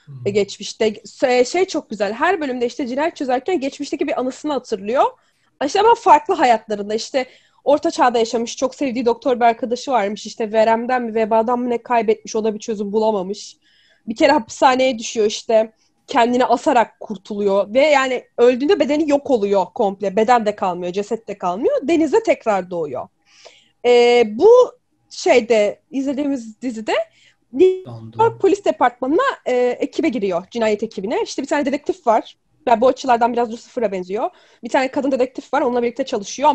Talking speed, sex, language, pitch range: 155 wpm, female, Turkish, 225-300 Hz